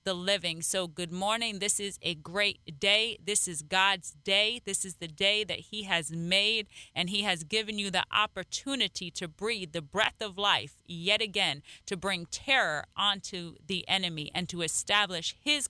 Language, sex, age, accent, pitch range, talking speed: English, female, 30-49, American, 175-200 Hz, 180 wpm